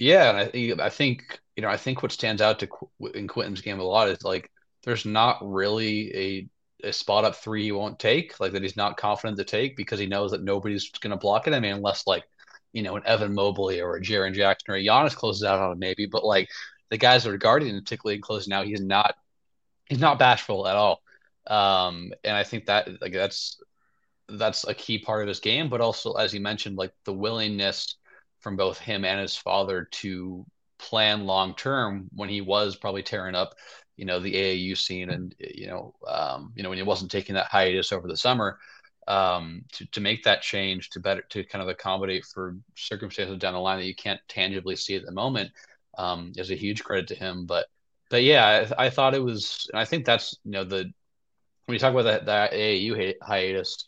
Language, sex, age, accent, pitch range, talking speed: English, male, 30-49, American, 95-110 Hz, 220 wpm